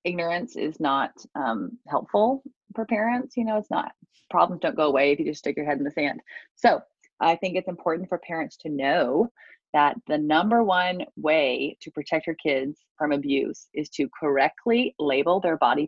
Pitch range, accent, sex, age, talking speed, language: 155-230 Hz, American, female, 30-49, 190 wpm, English